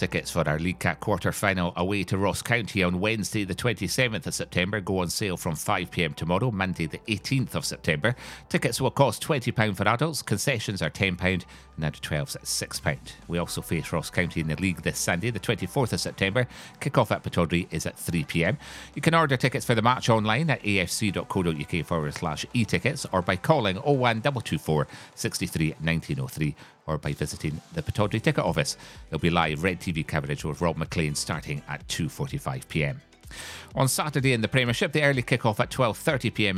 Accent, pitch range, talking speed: British, 85-120 Hz, 180 wpm